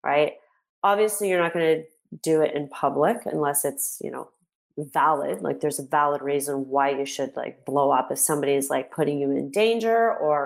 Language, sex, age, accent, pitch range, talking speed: English, female, 30-49, American, 145-170 Hz, 200 wpm